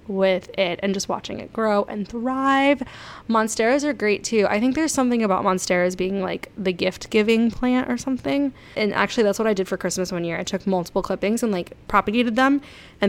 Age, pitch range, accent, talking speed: 10-29, 185-220 Hz, American, 210 wpm